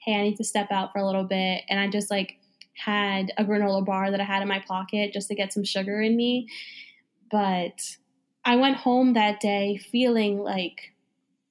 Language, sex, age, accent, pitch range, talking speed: English, female, 10-29, American, 200-225 Hz, 205 wpm